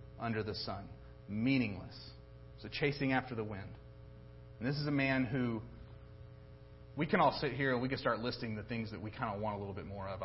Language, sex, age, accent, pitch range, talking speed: English, male, 30-49, American, 110-140 Hz, 215 wpm